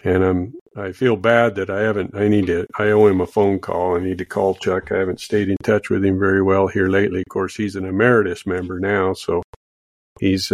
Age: 50-69